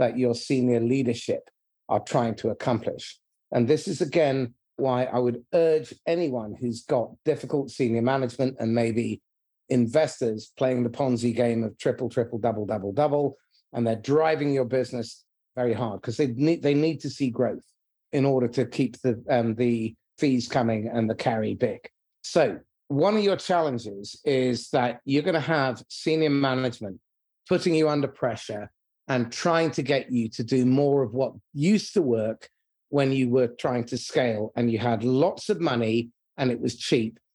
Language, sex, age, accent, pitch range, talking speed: English, male, 30-49, British, 115-140 Hz, 175 wpm